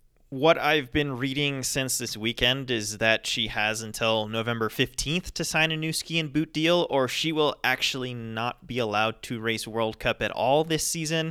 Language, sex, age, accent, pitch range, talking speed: English, male, 20-39, American, 110-145 Hz, 195 wpm